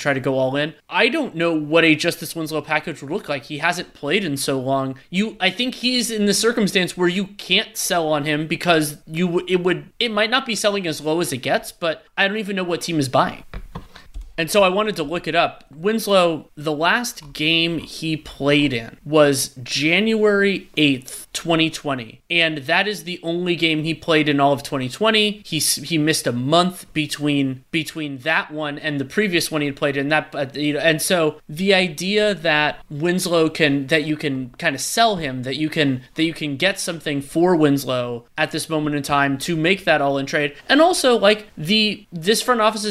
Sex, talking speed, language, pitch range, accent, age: male, 215 wpm, English, 145-185 Hz, American, 30-49